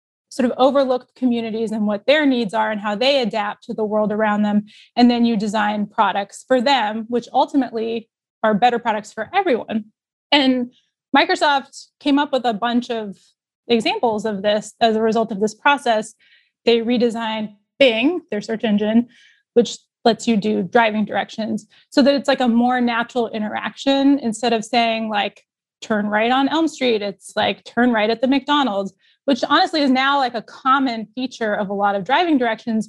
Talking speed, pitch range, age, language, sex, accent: 180 wpm, 215-255 Hz, 20-39, English, female, American